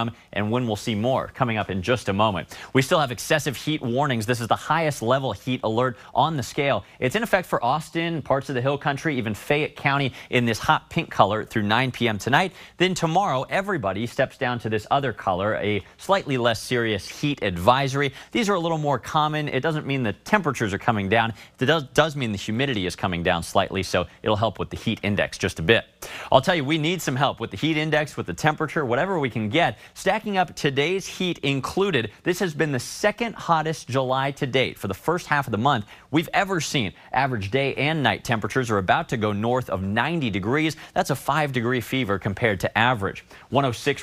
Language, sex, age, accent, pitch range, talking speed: English, male, 30-49, American, 110-150 Hz, 220 wpm